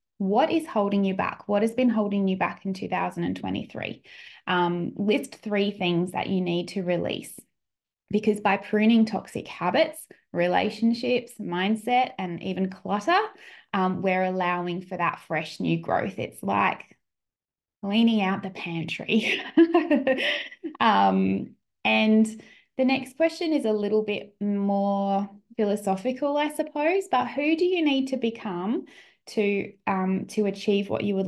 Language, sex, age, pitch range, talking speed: English, female, 20-39, 185-225 Hz, 140 wpm